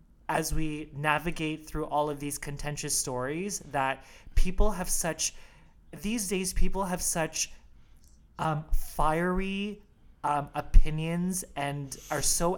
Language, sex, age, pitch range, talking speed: English, male, 30-49, 140-170 Hz, 120 wpm